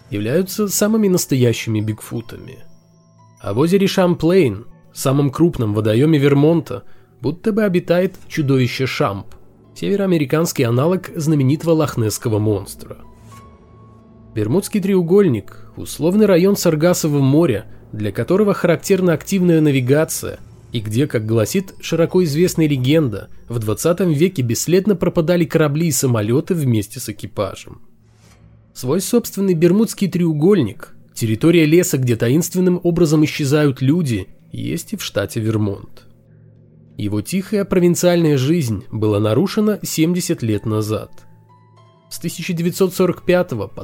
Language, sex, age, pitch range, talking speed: Russian, male, 20-39, 115-175 Hz, 110 wpm